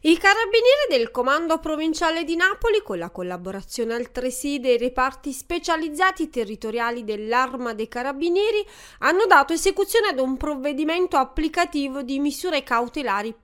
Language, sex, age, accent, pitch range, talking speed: Italian, female, 30-49, native, 245-345 Hz, 125 wpm